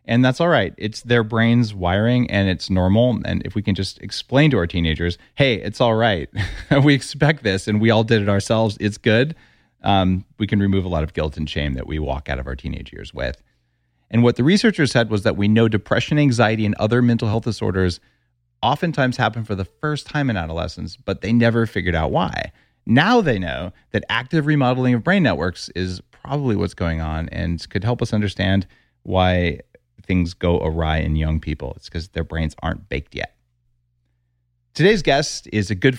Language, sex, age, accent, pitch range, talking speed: English, male, 40-59, American, 90-120 Hz, 205 wpm